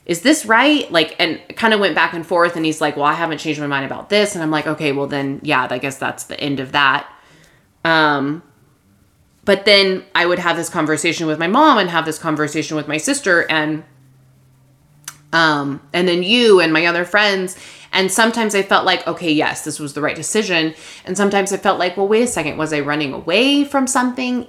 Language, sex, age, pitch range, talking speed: English, female, 20-39, 145-190 Hz, 220 wpm